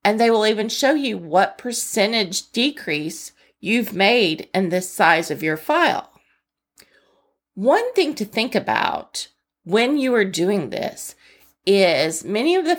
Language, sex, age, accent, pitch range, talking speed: English, female, 40-59, American, 185-245 Hz, 145 wpm